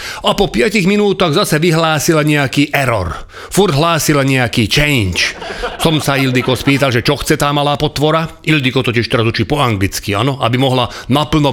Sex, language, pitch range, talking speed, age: male, Slovak, 125-165 Hz, 165 wpm, 40-59